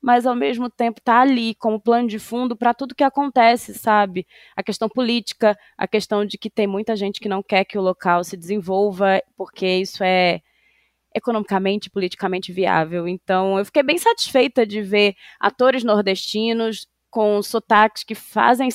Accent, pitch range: Brazilian, 195-235 Hz